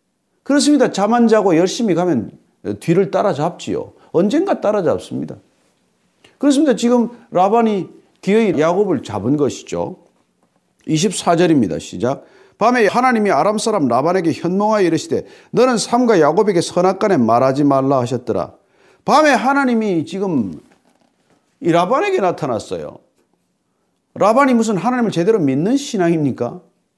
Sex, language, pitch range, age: male, Korean, 165-240 Hz, 40-59